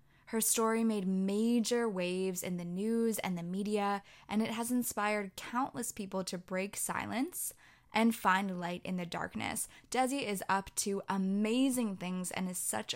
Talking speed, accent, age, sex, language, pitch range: 160 wpm, American, 10-29, female, English, 185-220 Hz